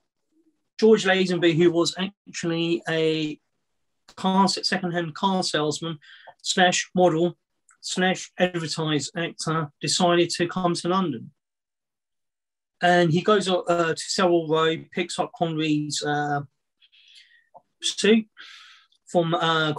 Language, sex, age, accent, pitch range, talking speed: English, male, 30-49, British, 160-185 Hz, 105 wpm